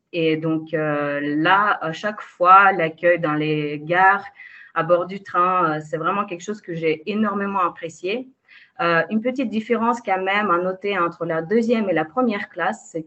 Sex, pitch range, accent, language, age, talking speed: female, 165-210 Hz, French, French, 30-49, 185 wpm